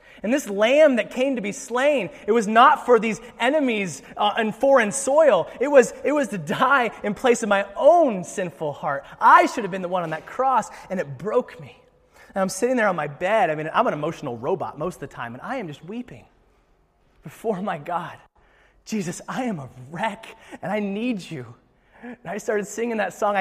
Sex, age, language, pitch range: male, 30-49, English, 140-210 Hz